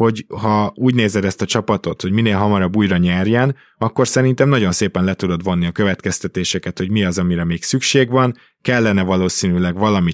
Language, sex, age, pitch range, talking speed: Hungarian, male, 20-39, 90-110 Hz, 180 wpm